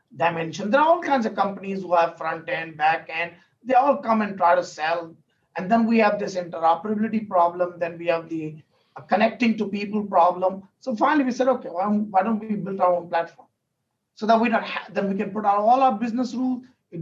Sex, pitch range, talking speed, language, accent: male, 180-240 Hz, 215 wpm, English, Indian